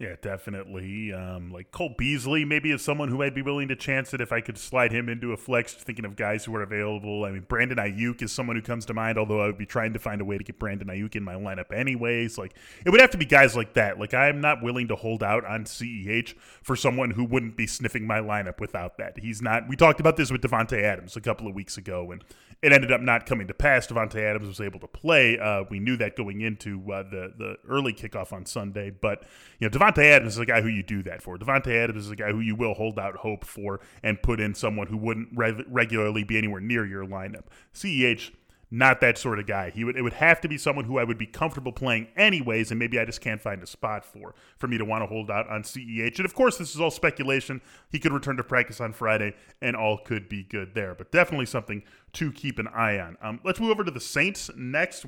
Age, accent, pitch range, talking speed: 20-39, American, 105-135 Hz, 265 wpm